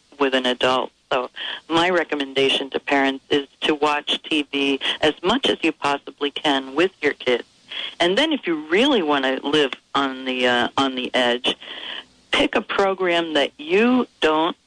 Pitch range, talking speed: 135-170 Hz, 170 wpm